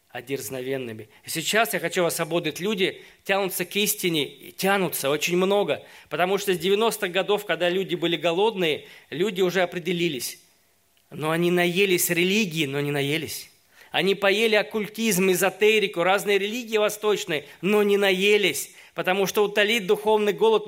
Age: 20-39